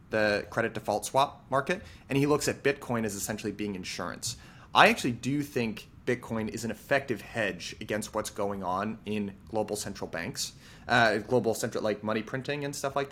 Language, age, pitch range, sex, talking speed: English, 30-49, 105-135 Hz, male, 185 wpm